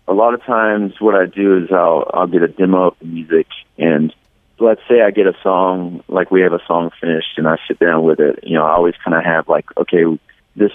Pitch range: 85-100 Hz